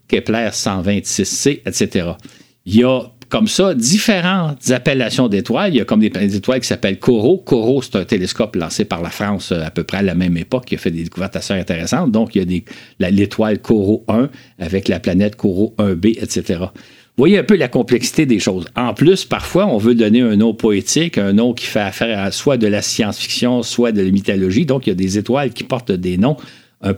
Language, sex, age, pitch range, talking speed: French, male, 50-69, 100-135 Hz, 215 wpm